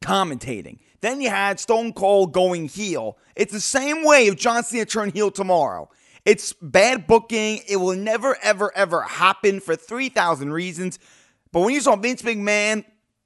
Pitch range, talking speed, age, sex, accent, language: 180-235 Hz, 165 wpm, 30-49, male, American, English